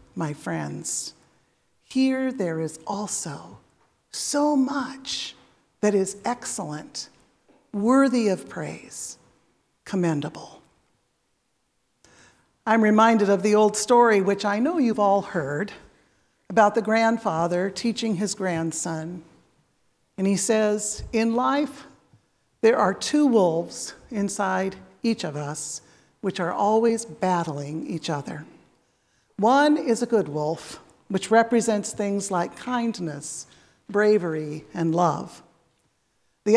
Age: 50-69